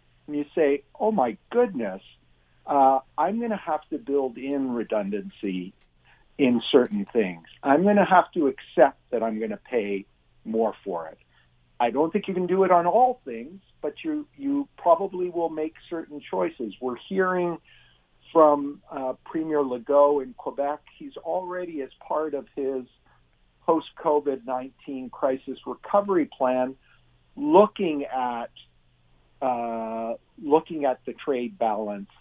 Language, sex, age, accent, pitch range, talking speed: English, male, 50-69, American, 120-175 Hz, 140 wpm